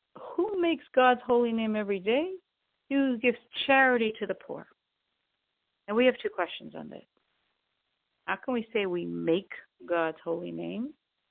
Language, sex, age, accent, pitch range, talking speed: English, female, 50-69, American, 185-240 Hz, 160 wpm